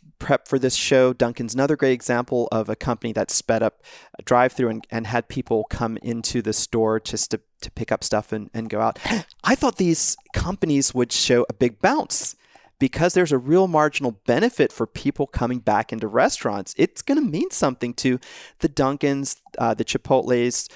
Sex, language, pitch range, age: male, English, 115-135 Hz, 30-49